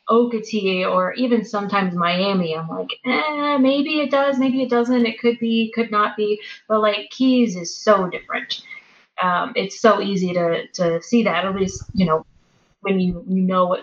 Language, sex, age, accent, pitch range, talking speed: English, female, 20-39, American, 180-225 Hz, 185 wpm